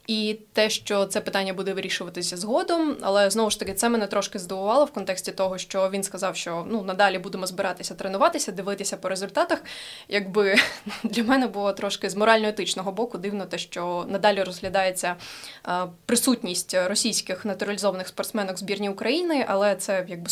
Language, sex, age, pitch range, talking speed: Ukrainian, female, 20-39, 190-230 Hz, 155 wpm